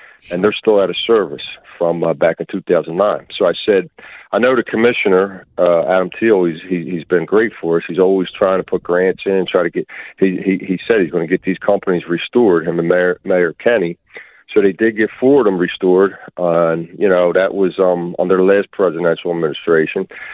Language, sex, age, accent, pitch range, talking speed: English, male, 40-59, American, 85-100 Hz, 225 wpm